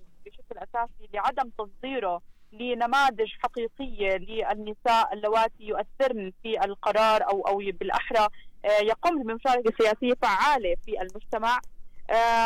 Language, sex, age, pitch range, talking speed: Arabic, female, 30-49, 215-275 Hz, 95 wpm